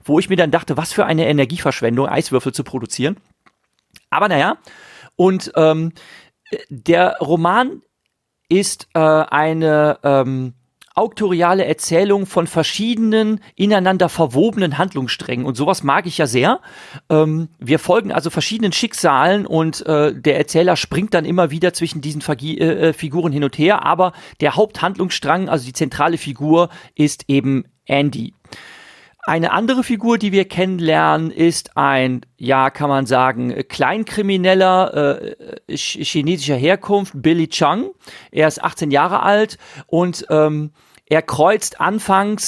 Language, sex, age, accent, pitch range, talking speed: German, male, 40-59, German, 145-185 Hz, 135 wpm